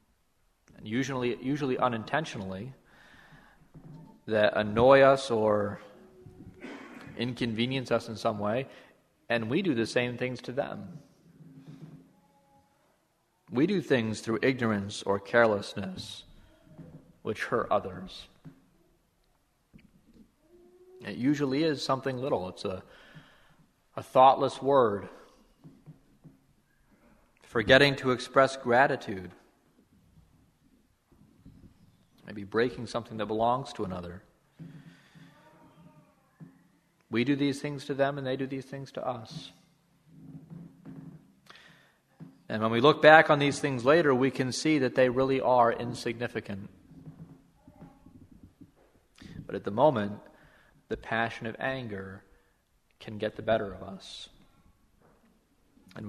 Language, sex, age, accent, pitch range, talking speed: English, male, 40-59, American, 110-145 Hz, 105 wpm